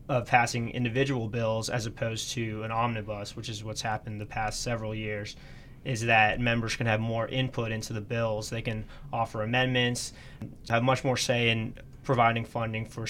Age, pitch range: 20-39, 110-125 Hz